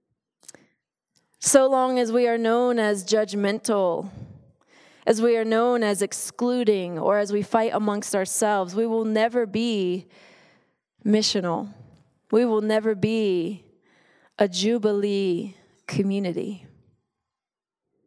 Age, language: 20-39, English